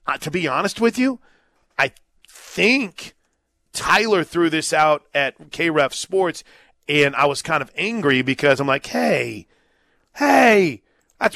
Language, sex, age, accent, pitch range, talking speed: English, male, 30-49, American, 135-170 Hz, 135 wpm